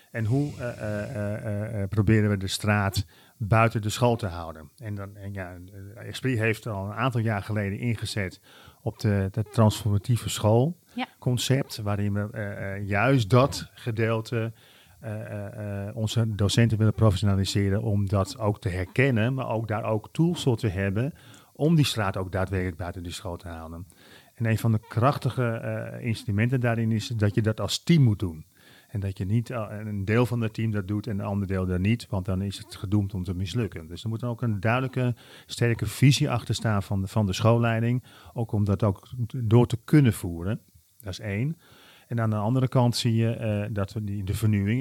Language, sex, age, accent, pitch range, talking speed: Dutch, male, 40-59, Dutch, 100-120 Hz, 195 wpm